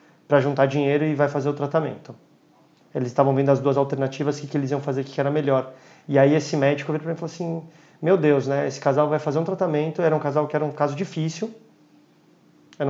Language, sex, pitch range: Portuguese, male, 145-175 Hz